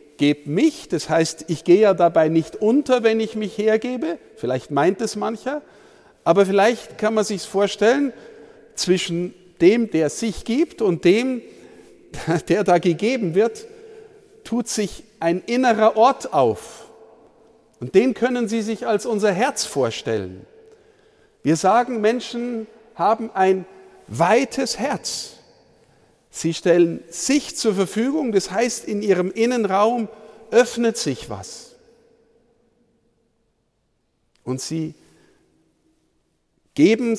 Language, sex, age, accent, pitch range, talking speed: German, male, 50-69, German, 190-245 Hz, 120 wpm